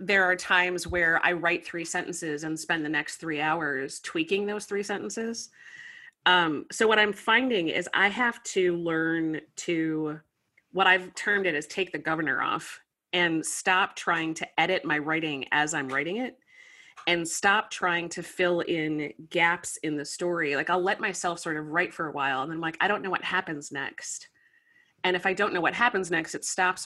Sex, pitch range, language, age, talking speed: female, 160-195 Hz, English, 30-49, 195 wpm